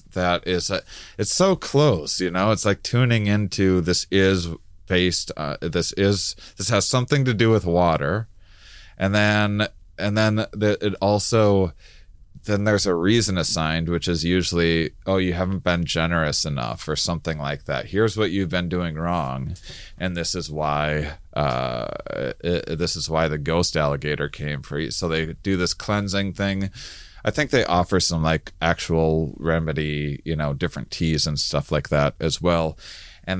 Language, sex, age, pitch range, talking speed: English, male, 30-49, 85-100 Hz, 170 wpm